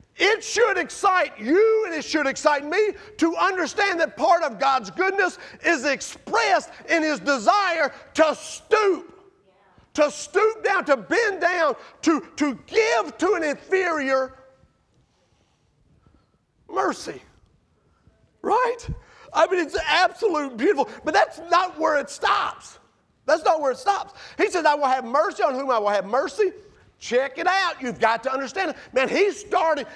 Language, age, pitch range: English, 40-59, 270-375 Hz